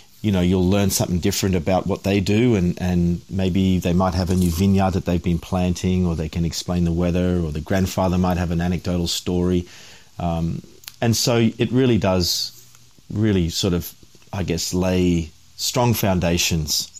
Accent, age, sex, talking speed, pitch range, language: Australian, 40-59, male, 185 wpm, 85-105 Hz, English